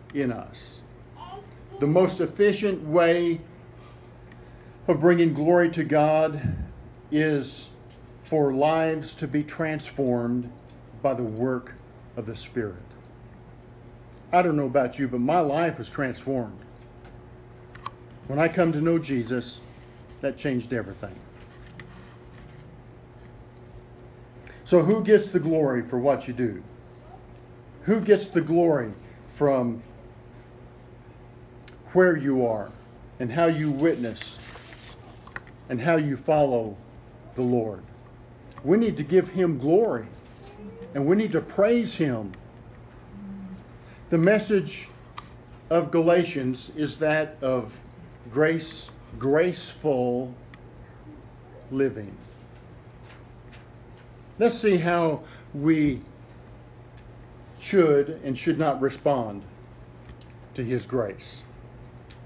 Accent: American